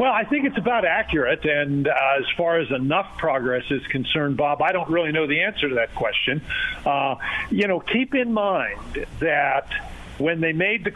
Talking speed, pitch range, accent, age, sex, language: 195 wpm, 150-190 Hz, American, 50-69, male, English